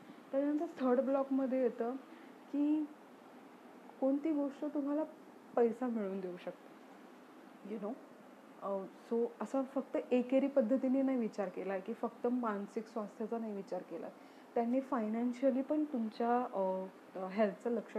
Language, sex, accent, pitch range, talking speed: Marathi, female, native, 215-270 Hz, 125 wpm